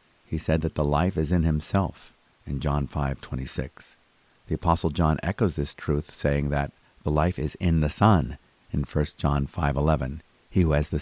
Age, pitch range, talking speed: 50-69, 75-90 Hz, 180 wpm